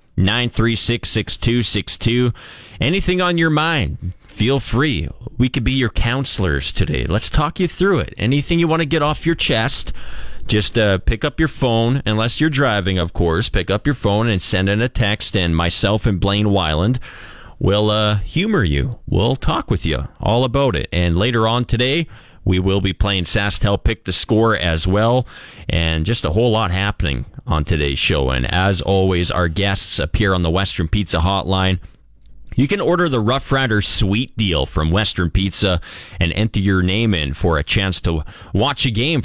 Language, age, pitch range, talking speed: English, 30-49, 90-125 Hz, 190 wpm